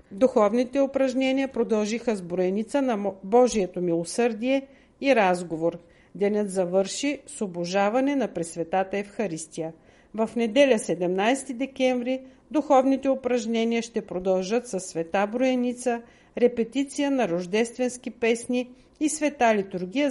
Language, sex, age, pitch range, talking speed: Bulgarian, female, 50-69, 195-265 Hz, 105 wpm